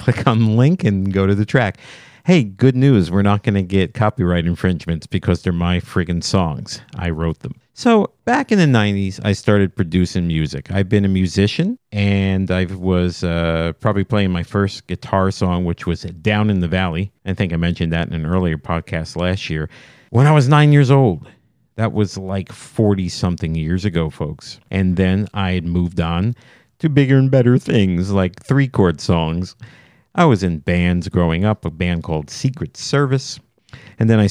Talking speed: 190 wpm